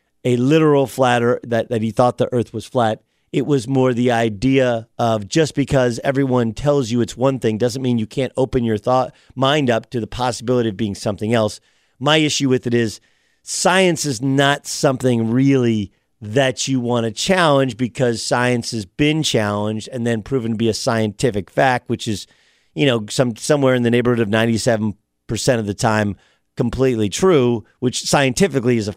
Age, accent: 40-59, American